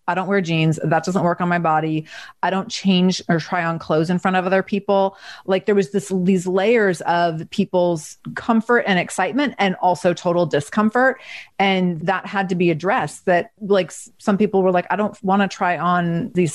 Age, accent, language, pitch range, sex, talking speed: 30-49, American, English, 170-195 Hz, female, 205 wpm